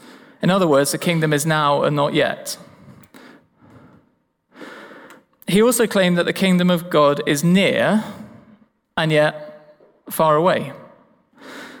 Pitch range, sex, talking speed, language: 155-215 Hz, male, 120 wpm, English